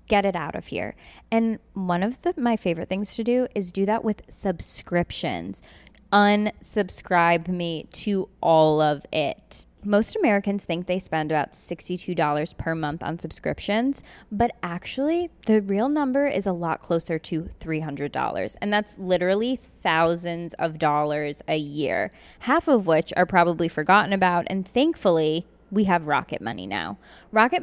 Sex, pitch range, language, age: female, 170-220 Hz, English, 20-39